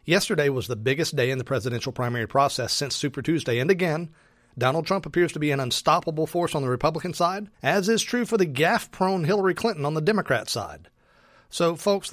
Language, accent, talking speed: English, American, 205 wpm